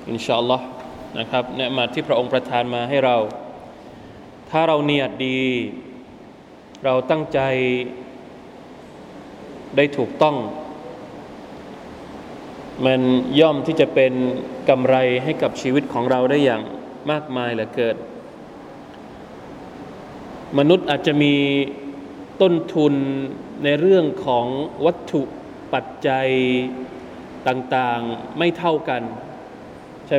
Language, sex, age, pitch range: Thai, male, 20-39, 130-160 Hz